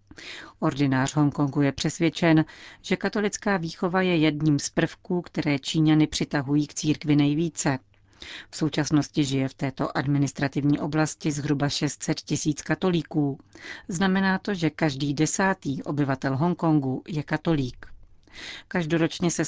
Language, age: Czech, 40-59